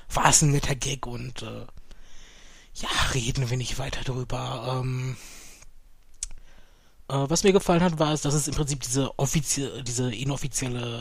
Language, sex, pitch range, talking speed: German, male, 120-150 Hz, 160 wpm